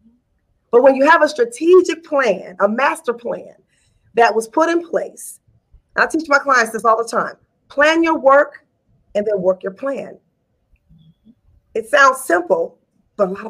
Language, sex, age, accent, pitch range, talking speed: English, female, 40-59, American, 225-300 Hz, 165 wpm